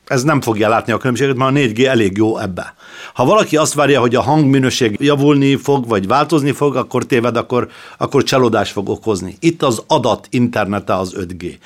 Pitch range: 110-140 Hz